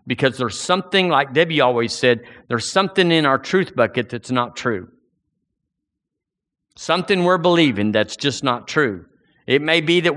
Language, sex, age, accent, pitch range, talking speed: English, male, 50-69, American, 125-165 Hz, 160 wpm